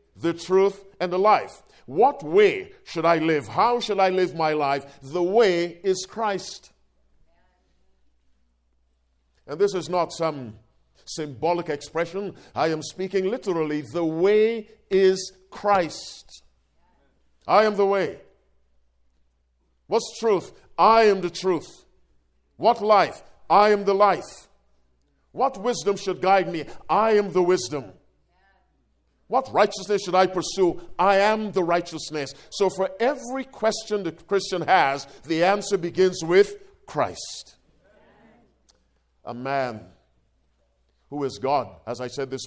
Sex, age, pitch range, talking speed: male, 50-69, 120-195 Hz, 125 wpm